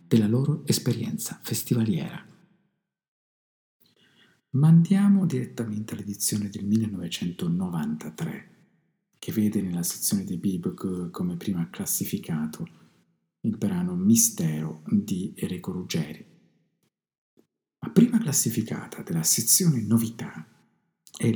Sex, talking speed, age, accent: male, 90 wpm, 50-69, native